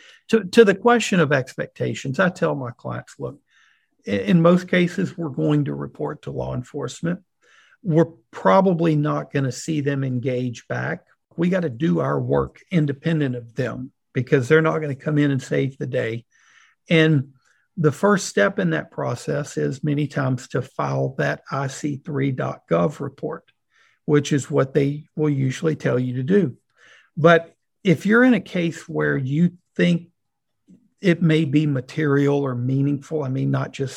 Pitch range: 135-170 Hz